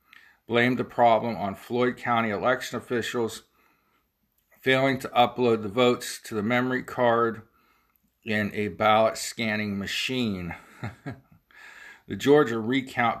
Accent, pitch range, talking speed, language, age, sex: American, 105-120 Hz, 110 wpm, English, 50-69, male